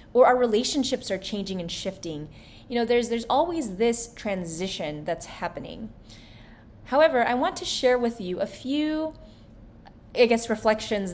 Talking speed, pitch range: 150 wpm, 185-235 Hz